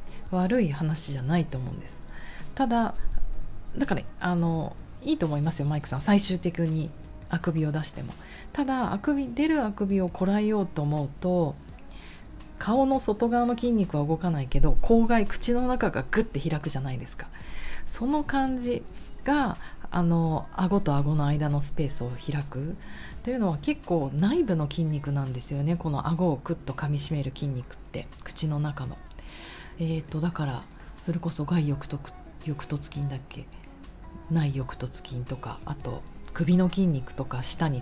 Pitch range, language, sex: 140-190 Hz, Japanese, female